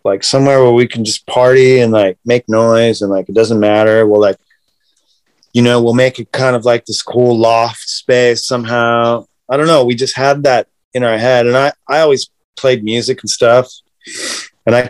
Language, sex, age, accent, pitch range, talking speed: English, male, 30-49, American, 110-125 Hz, 205 wpm